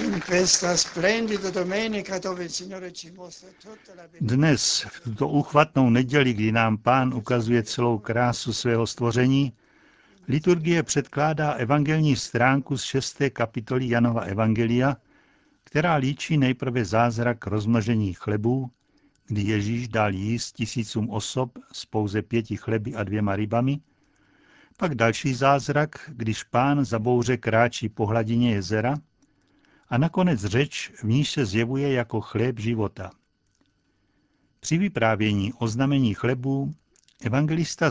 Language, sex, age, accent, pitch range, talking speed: Czech, male, 60-79, native, 115-145 Hz, 110 wpm